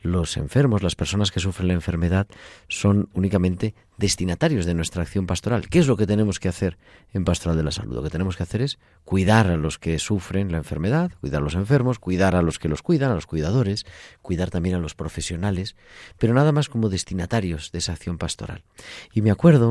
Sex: male